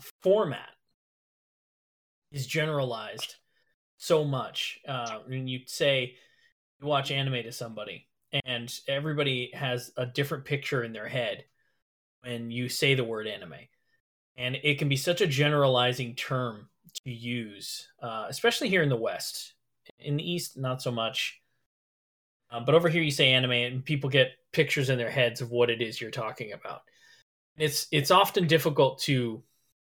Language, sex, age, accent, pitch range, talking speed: English, male, 20-39, American, 125-150 Hz, 155 wpm